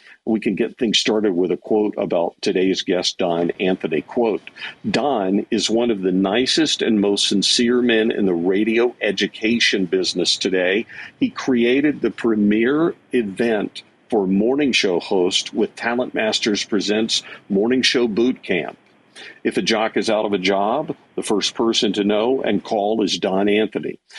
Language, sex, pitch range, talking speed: English, male, 95-120 Hz, 160 wpm